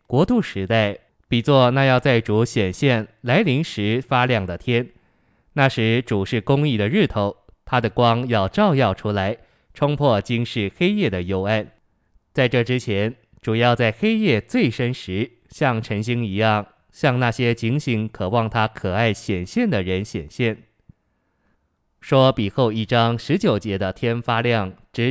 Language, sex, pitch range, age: Chinese, male, 105-125 Hz, 20-39